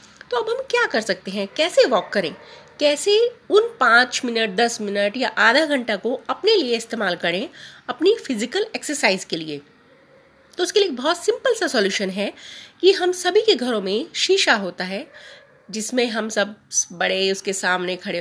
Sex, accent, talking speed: female, native, 175 wpm